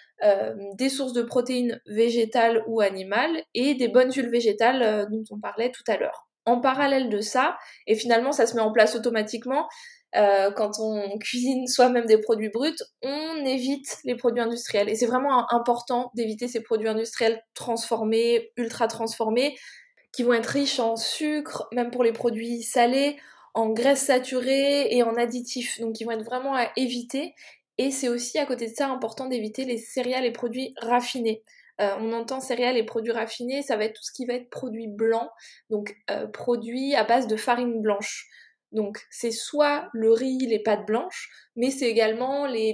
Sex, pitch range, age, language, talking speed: female, 225-255 Hz, 20-39, French, 185 wpm